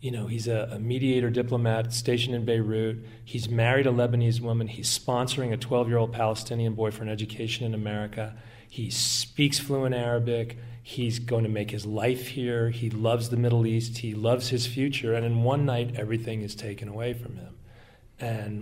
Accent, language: American, English